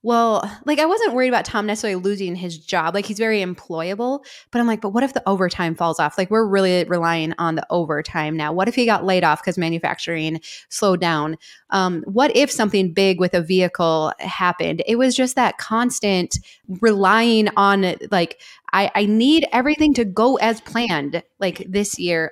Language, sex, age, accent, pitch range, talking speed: English, female, 20-39, American, 185-240 Hz, 190 wpm